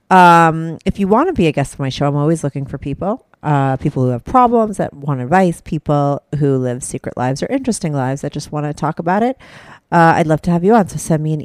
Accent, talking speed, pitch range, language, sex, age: American, 260 wpm, 145-195 Hz, English, female, 40-59